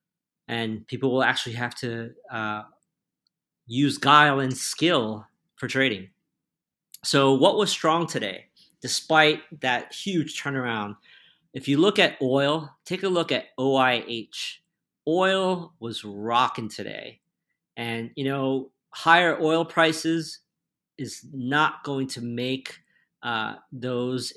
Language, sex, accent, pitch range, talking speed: English, male, American, 120-150 Hz, 120 wpm